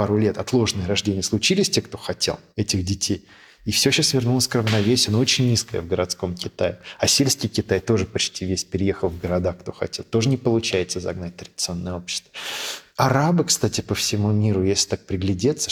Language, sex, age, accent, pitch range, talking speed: Russian, male, 20-39, native, 95-115 Hz, 180 wpm